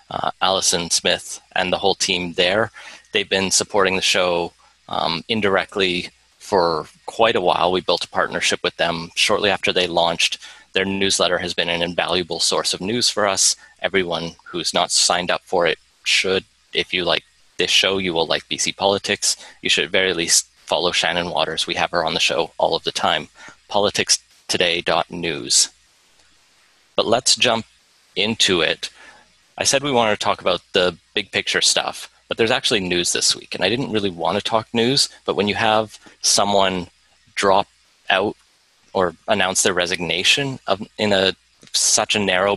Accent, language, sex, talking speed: American, English, male, 175 wpm